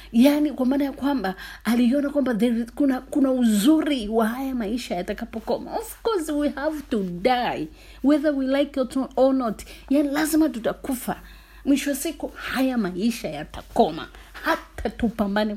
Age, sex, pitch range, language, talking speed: 30-49, female, 210-280 Hz, Swahili, 135 wpm